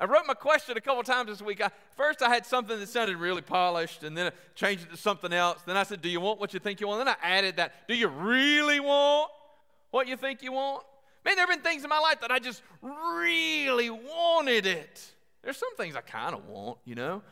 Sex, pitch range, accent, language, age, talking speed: male, 190-275 Hz, American, English, 40-59, 260 wpm